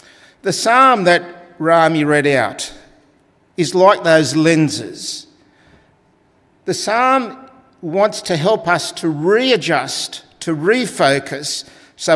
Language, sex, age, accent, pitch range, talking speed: English, male, 50-69, Australian, 150-205 Hz, 105 wpm